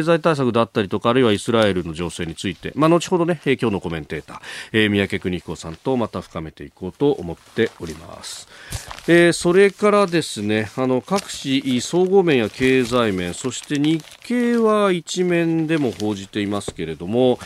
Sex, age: male, 40-59